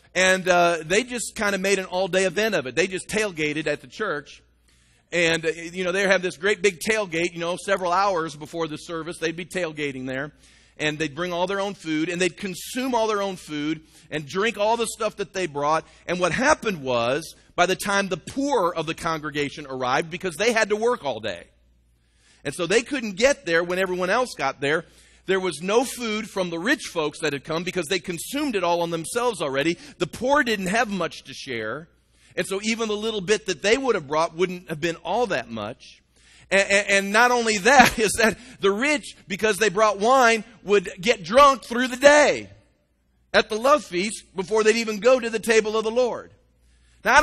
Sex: male